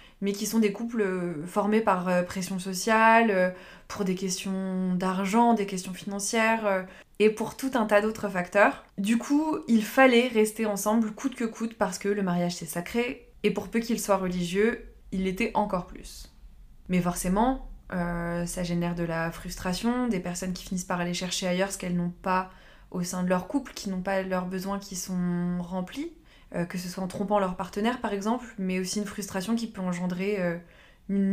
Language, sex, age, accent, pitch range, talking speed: French, female, 20-39, French, 180-220 Hz, 190 wpm